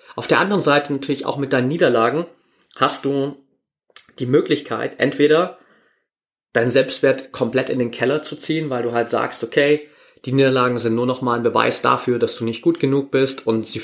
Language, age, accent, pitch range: German, 30-49, German, 115-145 Hz